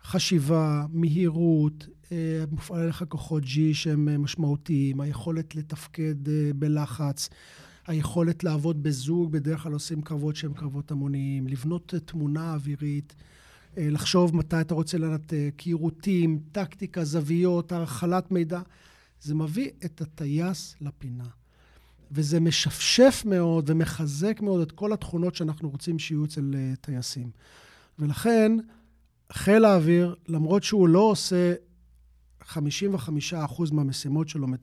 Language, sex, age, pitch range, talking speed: Hebrew, male, 40-59, 145-175 Hz, 105 wpm